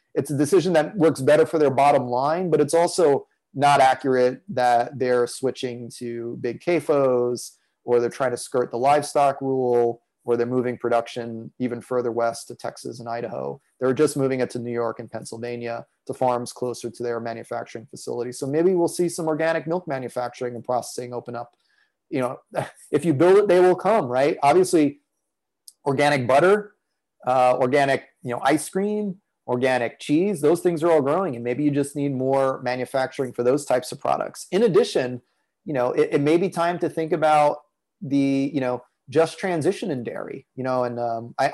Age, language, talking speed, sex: 30-49, English, 190 wpm, male